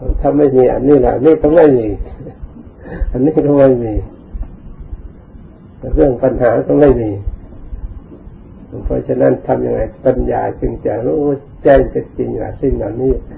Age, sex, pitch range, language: 60-79, male, 95-125 Hz, Thai